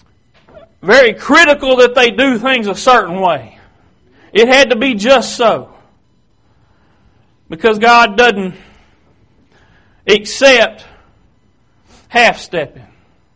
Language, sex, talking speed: English, male, 90 wpm